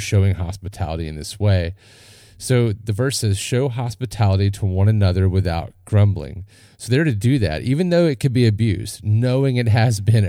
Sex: male